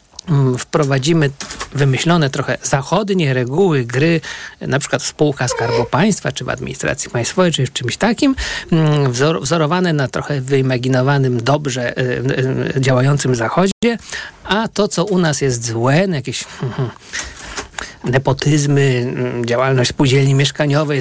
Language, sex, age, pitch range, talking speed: Polish, male, 50-69, 135-180 Hz, 110 wpm